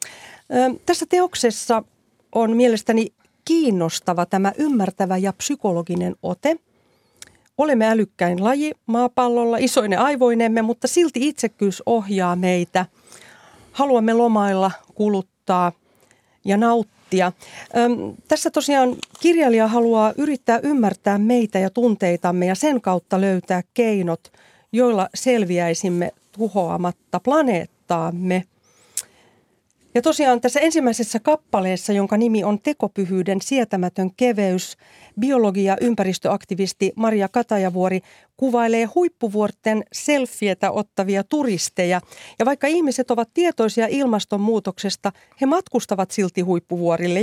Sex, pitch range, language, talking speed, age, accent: female, 185-245 Hz, Finnish, 95 wpm, 40-59, native